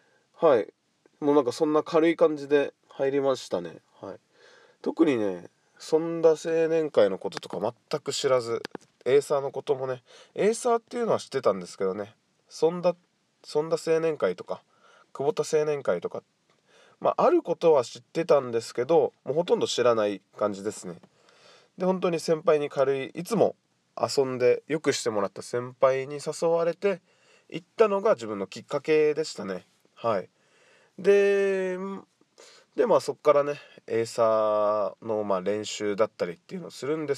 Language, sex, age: Japanese, male, 20-39